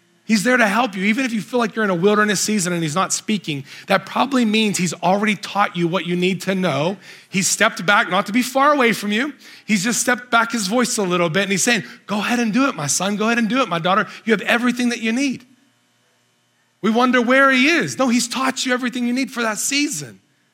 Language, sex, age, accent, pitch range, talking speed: English, male, 30-49, American, 180-230 Hz, 255 wpm